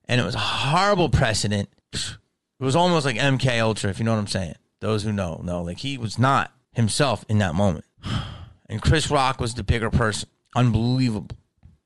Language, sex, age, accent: English, male, 30-49, American